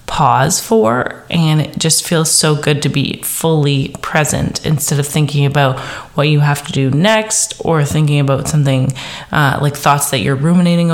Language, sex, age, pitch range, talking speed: English, female, 20-39, 145-185 Hz, 175 wpm